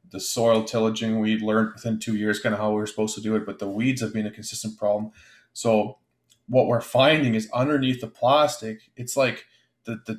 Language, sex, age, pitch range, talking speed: English, male, 20-39, 105-120 Hz, 220 wpm